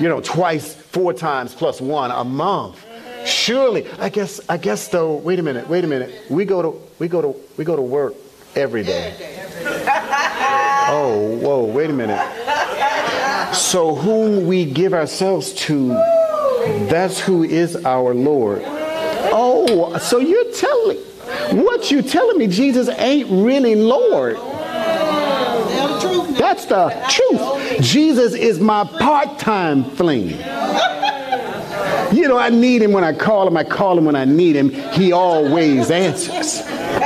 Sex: male